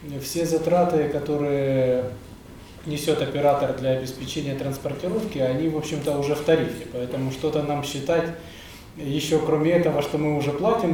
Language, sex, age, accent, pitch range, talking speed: Ukrainian, male, 20-39, native, 130-155 Hz, 135 wpm